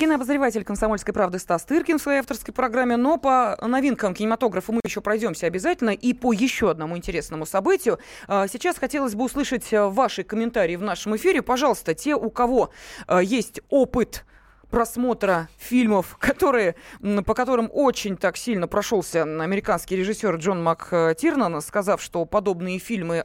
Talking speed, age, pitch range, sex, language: 140 wpm, 20-39, 185-245 Hz, female, Russian